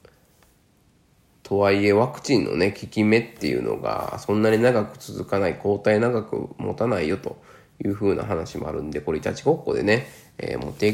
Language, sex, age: Japanese, male, 20-39